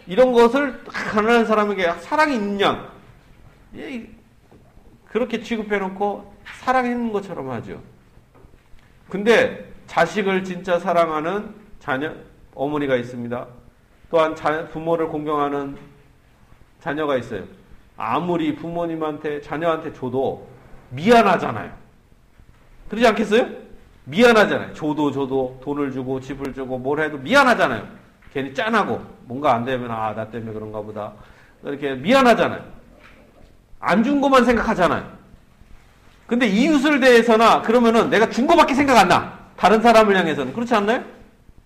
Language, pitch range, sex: Korean, 145-230 Hz, male